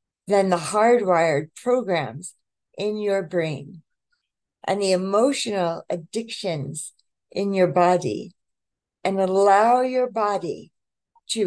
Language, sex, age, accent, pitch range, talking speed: English, female, 60-79, American, 170-205 Hz, 100 wpm